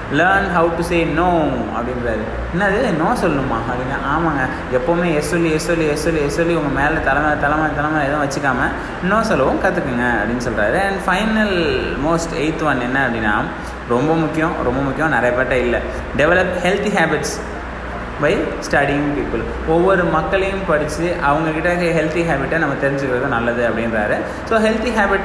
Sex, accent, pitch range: male, native, 135-170 Hz